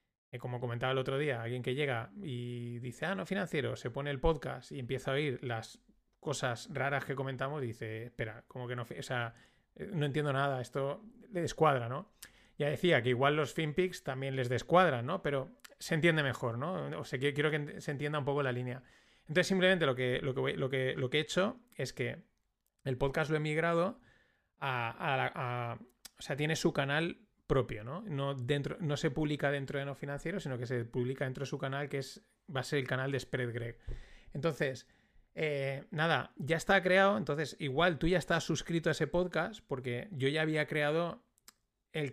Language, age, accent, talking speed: Spanish, 30-49, Spanish, 205 wpm